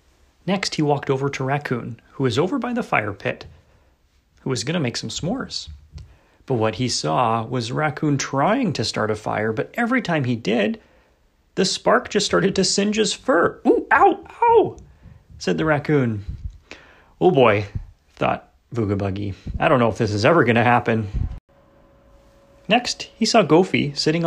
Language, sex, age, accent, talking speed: English, male, 30-49, American, 170 wpm